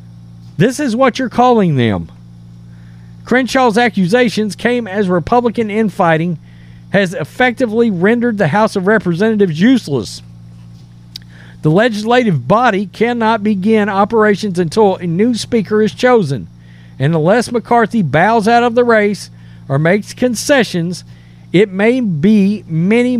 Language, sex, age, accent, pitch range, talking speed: English, male, 40-59, American, 160-230 Hz, 120 wpm